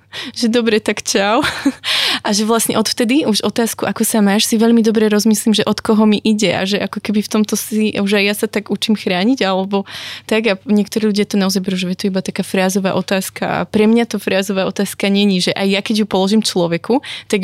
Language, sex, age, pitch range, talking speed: Slovak, female, 20-39, 195-220 Hz, 225 wpm